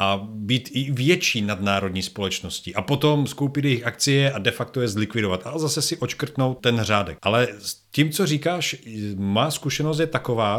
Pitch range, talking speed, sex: 105-135 Hz, 175 wpm, male